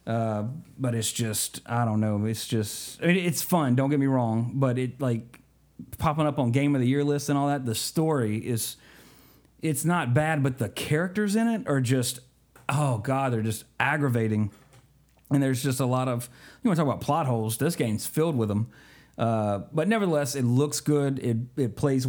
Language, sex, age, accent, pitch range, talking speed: English, male, 40-59, American, 115-145 Hz, 200 wpm